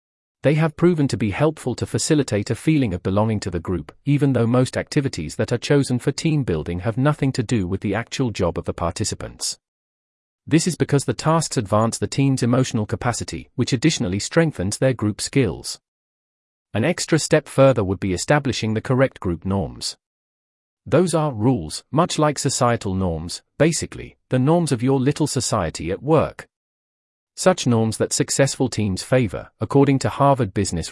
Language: English